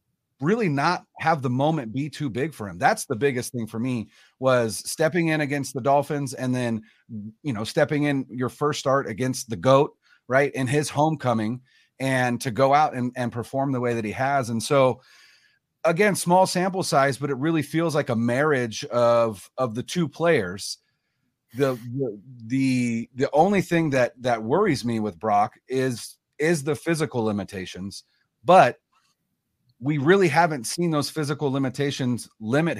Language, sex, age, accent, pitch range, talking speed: English, male, 30-49, American, 115-150 Hz, 170 wpm